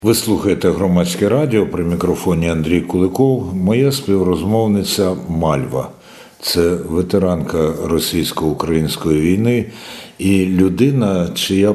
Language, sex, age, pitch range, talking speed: Ukrainian, male, 60-79, 80-100 Hz, 95 wpm